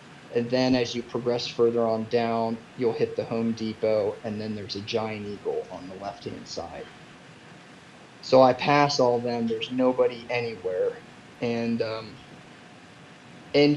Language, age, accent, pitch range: English, 30-49, American, 115-130 Hz